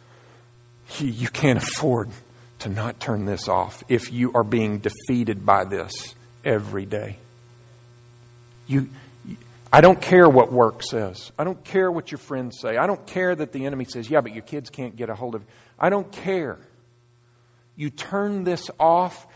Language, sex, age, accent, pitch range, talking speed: English, male, 50-69, American, 120-145 Hz, 170 wpm